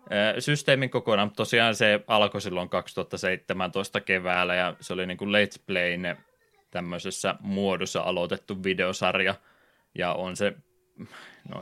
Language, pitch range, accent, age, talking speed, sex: Finnish, 90-115 Hz, native, 20-39, 120 wpm, male